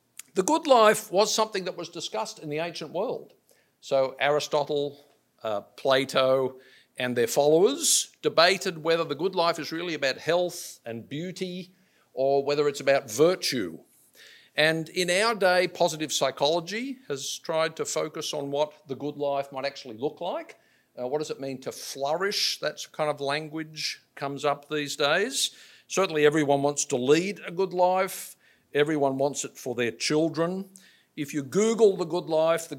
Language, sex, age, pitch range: English, male, 50-69, 135-180 Hz